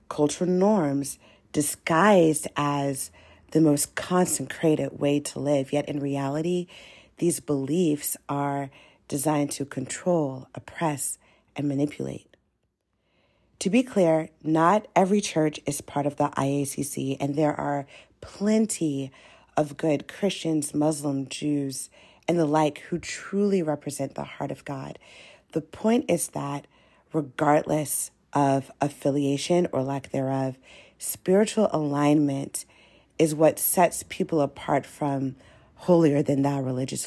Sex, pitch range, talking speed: female, 140-165 Hz, 115 wpm